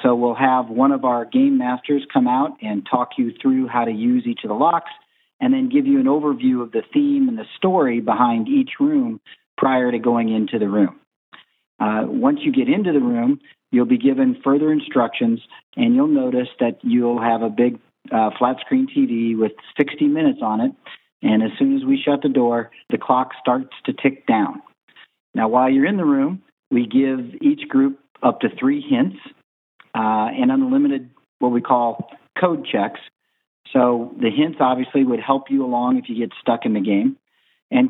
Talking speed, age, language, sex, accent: 195 wpm, 50-69, English, male, American